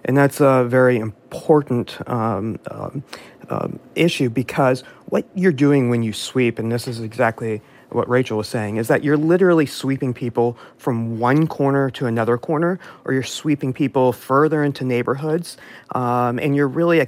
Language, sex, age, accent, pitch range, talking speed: English, male, 40-59, American, 120-160 Hz, 165 wpm